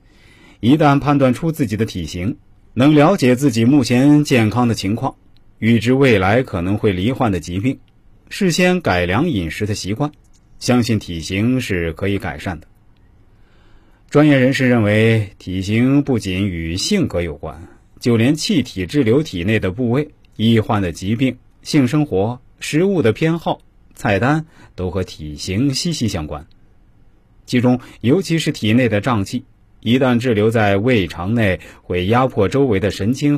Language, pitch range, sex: Chinese, 95-130 Hz, male